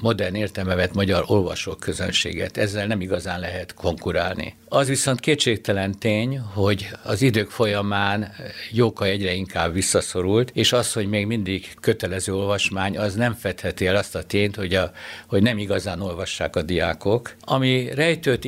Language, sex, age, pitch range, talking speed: Hungarian, male, 60-79, 95-110 Hz, 150 wpm